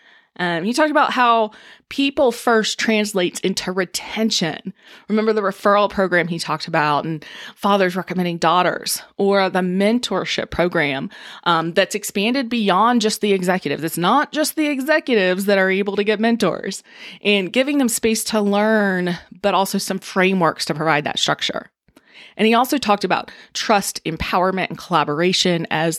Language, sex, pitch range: English, female, 180-235 Hz